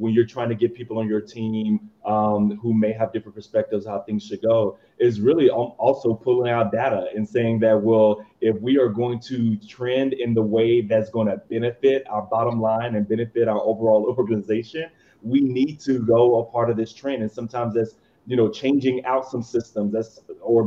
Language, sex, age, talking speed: English, male, 30-49, 205 wpm